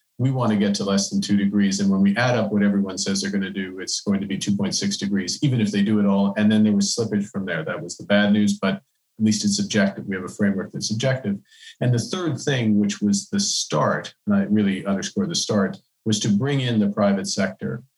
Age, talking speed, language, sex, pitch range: 40-59, 255 wpm, English, male, 100-155 Hz